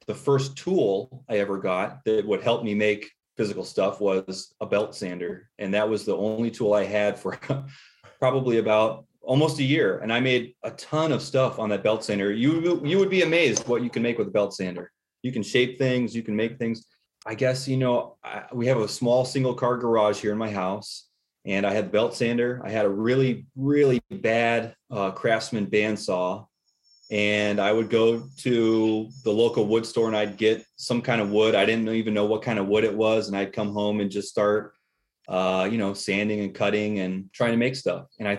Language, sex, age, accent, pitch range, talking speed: English, male, 30-49, American, 100-120 Hz, 215 wpm